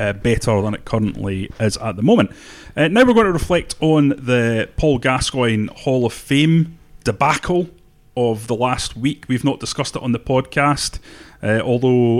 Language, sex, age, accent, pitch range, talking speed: English, male, 30-49, British, 105-130 Hz, 175 wpm